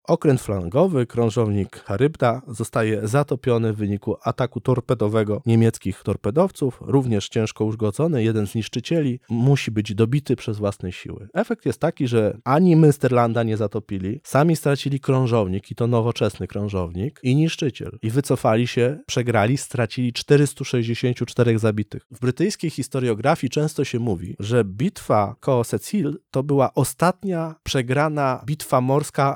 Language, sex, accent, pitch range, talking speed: Polish, male, native, 110-140 Hz, 130 wpm